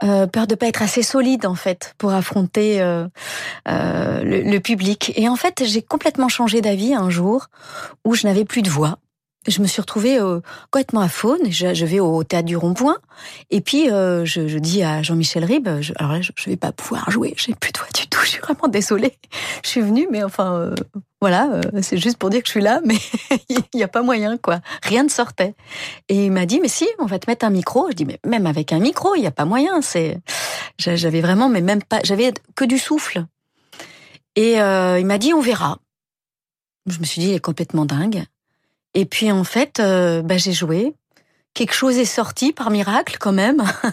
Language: French